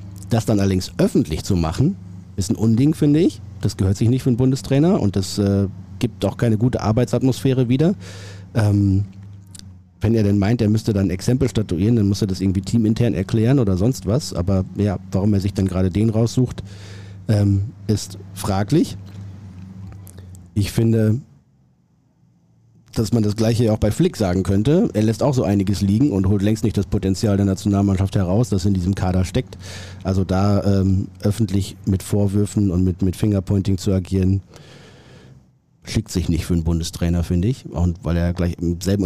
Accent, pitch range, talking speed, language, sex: German, 95-105 Hz, 180 wpm, German, male